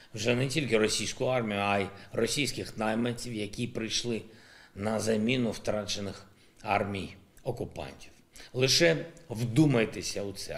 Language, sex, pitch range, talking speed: Ukrainian, male, 105-130 Hz, 115 wpm